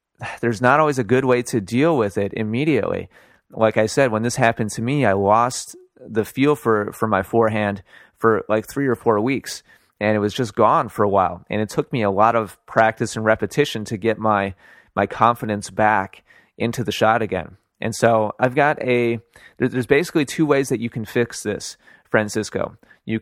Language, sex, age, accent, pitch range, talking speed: English, male, 30-49, American, 110-125 Hz, 200 wpm